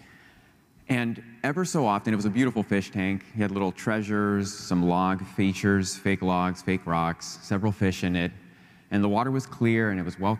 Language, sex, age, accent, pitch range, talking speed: English, male, 30-49, American, 95-125 Hz, 195 wpm